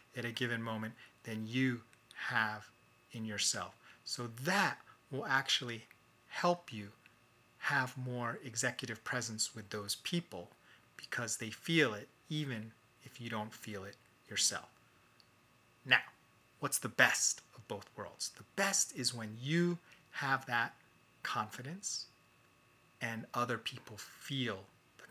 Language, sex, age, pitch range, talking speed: English, male, 30-49, 110-135 Hz, 125 wpm